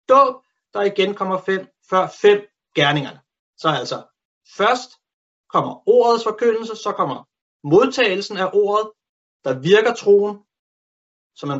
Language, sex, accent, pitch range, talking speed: Danish, male, native, 155-220 Hz, 120 wpm